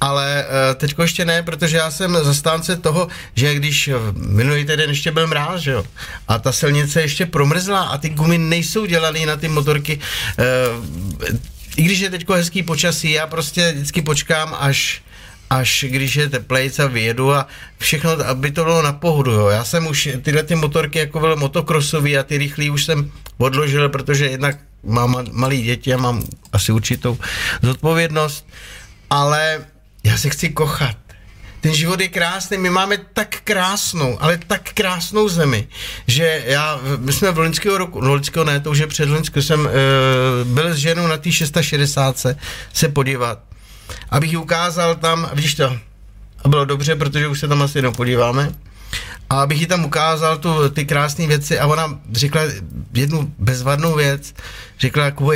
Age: 50-69